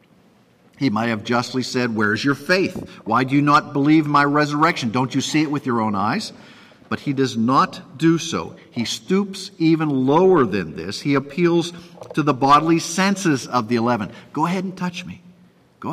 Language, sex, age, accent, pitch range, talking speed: English, male, 50-69, American, 120-175 Hz, 190 wpm